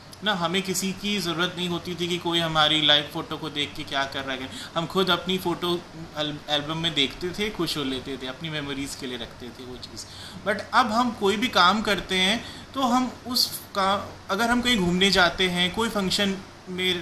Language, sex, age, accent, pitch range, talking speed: Hindi, male, 30-49, native, 145-195 Hz, 220 wpm